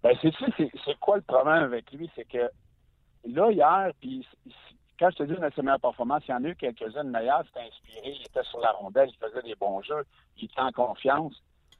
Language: French